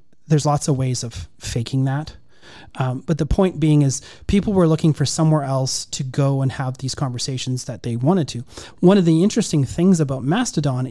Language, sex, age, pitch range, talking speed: English, male, 30-49, 135-165 Hz, 200 wpm